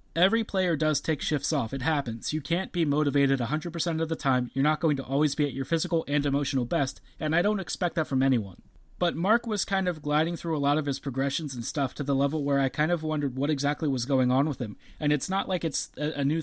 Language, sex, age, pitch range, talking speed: English, male, 30-49, 135-165 Hz, 260 wpm